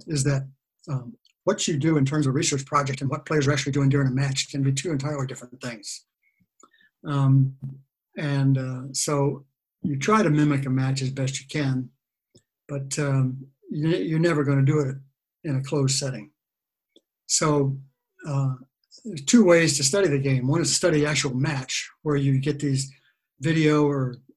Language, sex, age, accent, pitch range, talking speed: English, male, 60-79, American, 135-150 Hz, 180 wpm